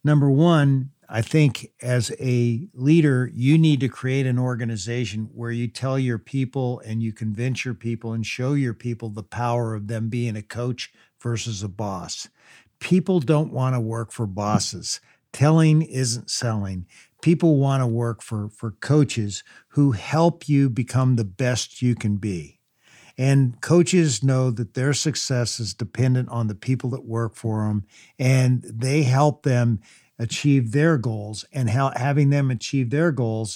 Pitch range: 115-145 Hz